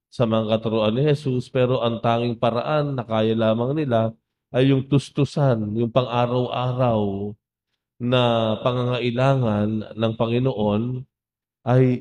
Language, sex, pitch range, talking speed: English, male, 110-125 Hz, 115 wpm